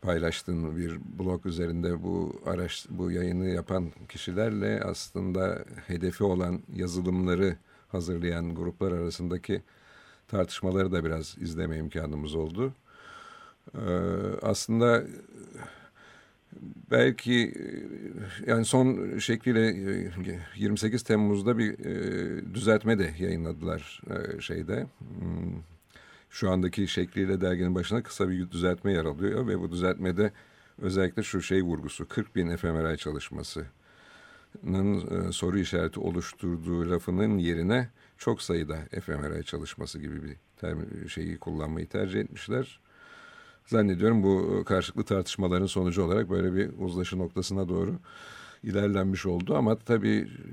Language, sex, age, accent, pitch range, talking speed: Turkish, male, 50-69, native, 85-105 Hz, 110 wpm